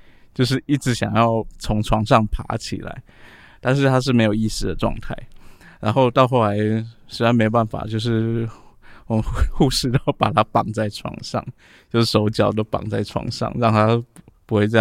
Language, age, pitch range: Chinese, 20-39, 110-125 Hz